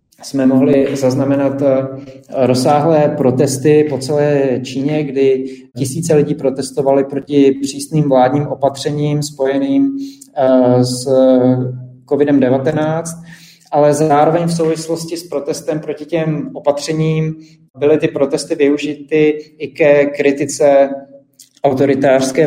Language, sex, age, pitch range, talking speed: Slovak, male, 30-49, 135-150 Hz, 95 wpm